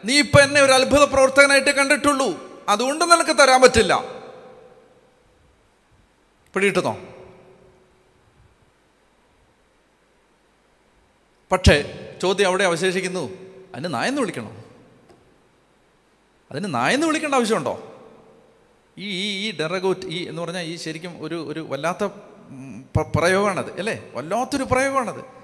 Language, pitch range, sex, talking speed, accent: Malayalam, 170-265 Hz, male, 85 wpm, native